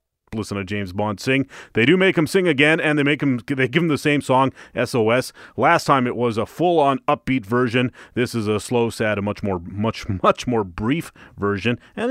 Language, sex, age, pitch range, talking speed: English, male, 30-49, 110-140 Hz, 220 wpm